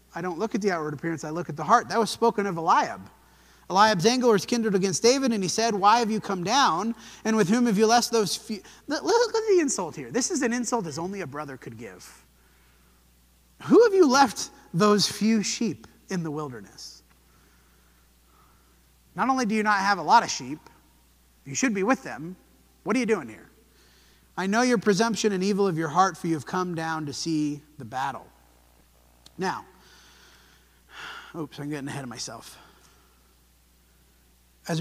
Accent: American